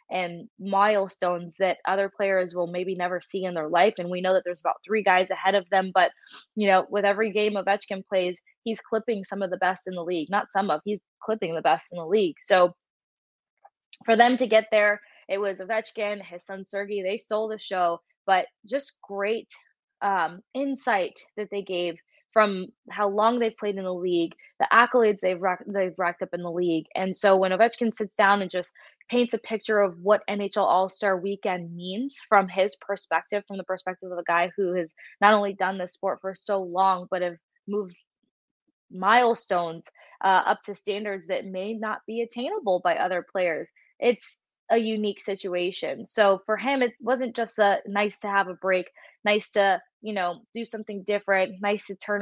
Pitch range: 185-215 Hz